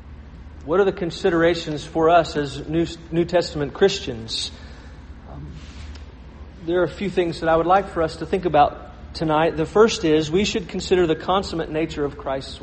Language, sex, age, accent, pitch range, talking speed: English, male, 40-59, American, 120-180 Hz, 170 wpm